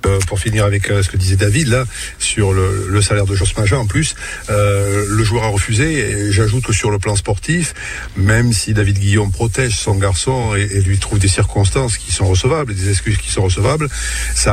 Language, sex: French, male